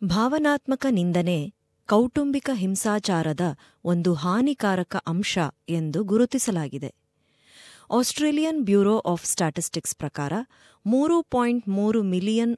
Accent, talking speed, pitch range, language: native, 85 wpm, 165-235 Hz, Kannada